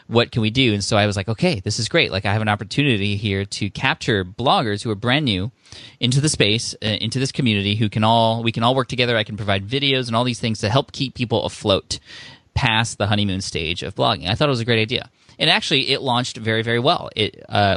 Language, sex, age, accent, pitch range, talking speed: English, male, 20-39, American, 100-120 Hz, 255 wpm